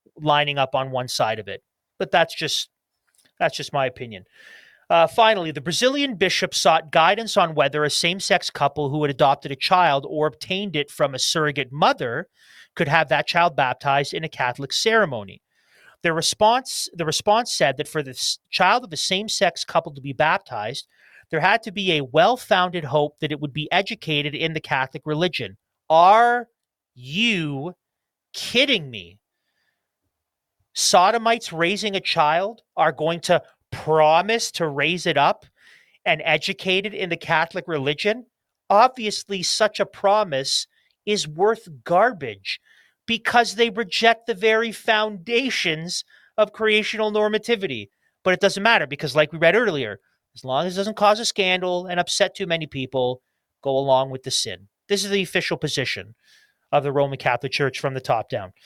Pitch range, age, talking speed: 145-210 Hz, 30-49, 165 wpm